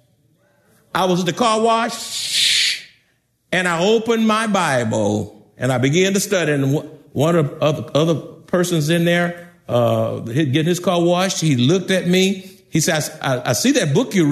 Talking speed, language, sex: 170 wpm, English, male